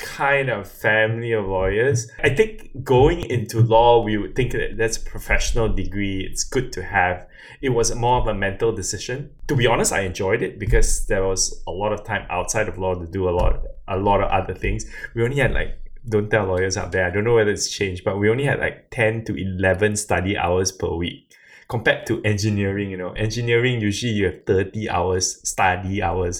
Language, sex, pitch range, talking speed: English, male, 100-125 Hz, 210 wpm